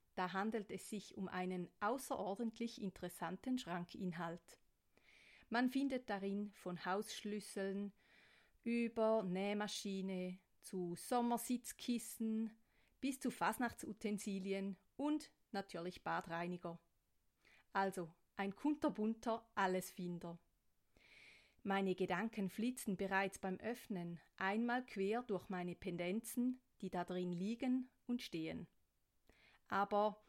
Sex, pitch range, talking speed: female, 180-230 Hz, 90 wpm